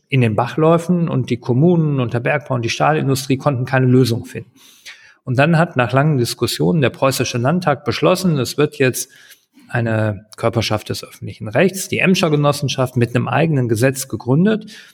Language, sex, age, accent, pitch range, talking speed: German, male, 40-59, German, 125-160 Hz, 170 wpm